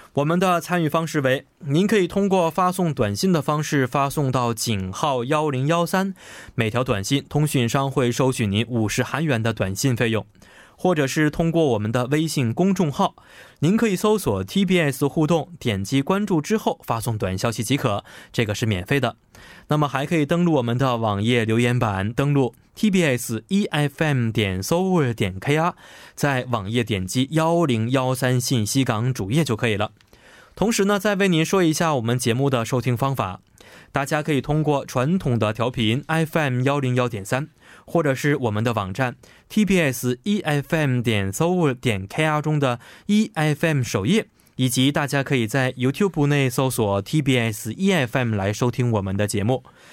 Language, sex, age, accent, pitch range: Korean, male, 20-39, Chinese, 120-160 Hz